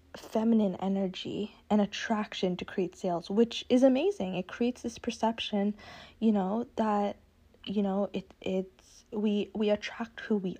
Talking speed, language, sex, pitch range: 145 wpm, English, female, 200-235 Hz